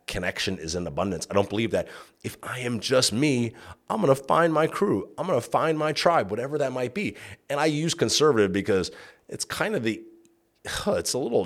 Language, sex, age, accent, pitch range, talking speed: English, male, 30-49, American, 95-130 Hz, 205 wpm